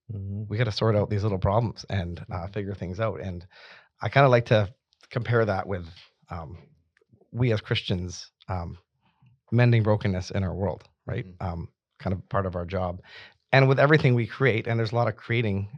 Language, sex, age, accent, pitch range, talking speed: English, male, 30-49, American, 95-115 Hz, 195 wpm